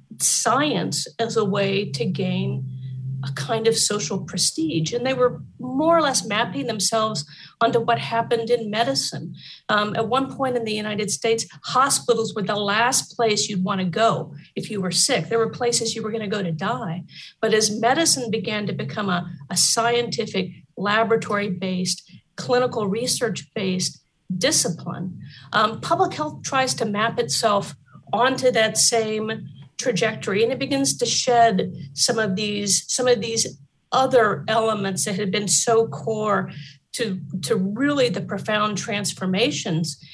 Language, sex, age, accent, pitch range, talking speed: English, female, 40-59, American, 180-230 Hz, 155 wpm